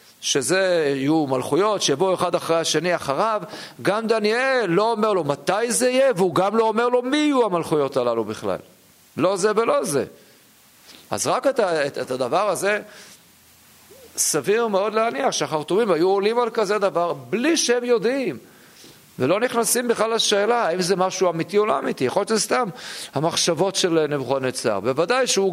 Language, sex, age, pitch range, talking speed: Hebrew, male, 50-69, 150-220 Hz, 155 wpm